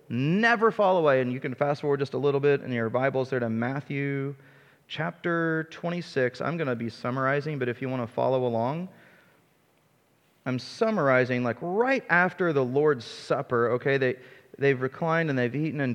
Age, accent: 30-49, American